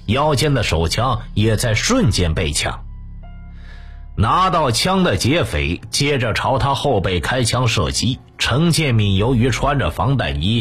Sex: male